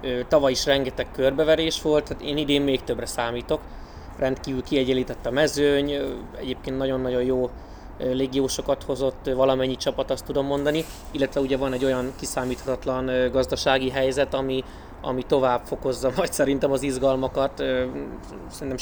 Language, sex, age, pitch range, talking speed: Hungarian, male, 20-39, 130-140 Hz, 135 wpm